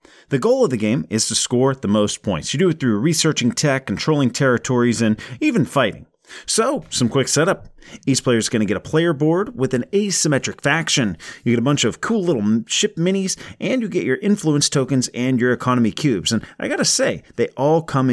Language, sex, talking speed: English, male, 220 wpm